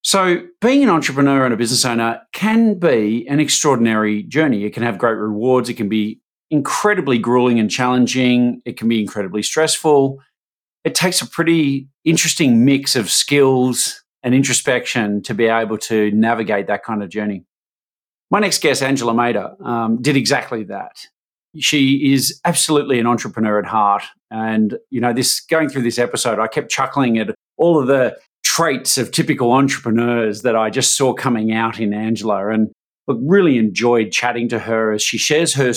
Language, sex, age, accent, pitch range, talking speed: English, male, 40-59, Australian, 115-140 Hz, 170 wpm